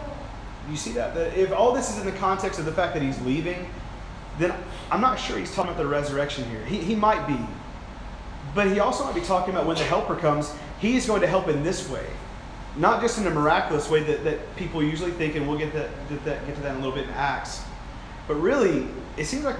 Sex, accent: male, American